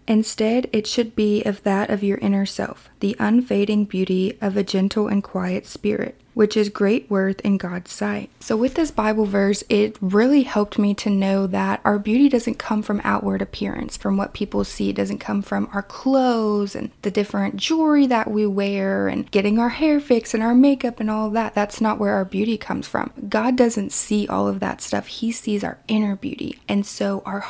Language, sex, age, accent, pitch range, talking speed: English, female, 20-39, American, 195-225 Hz, 205 wpm